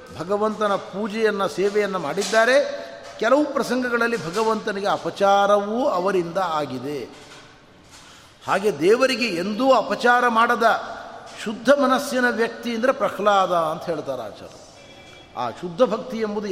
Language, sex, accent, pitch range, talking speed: Kannada, male, native, 170-230 Hz, 95 wpm